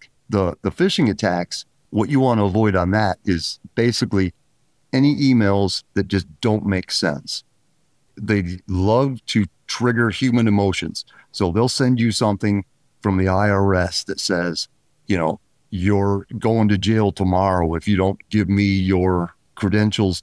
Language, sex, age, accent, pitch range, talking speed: English, male, 40-59, American, 95-115 Hz, 150 wpm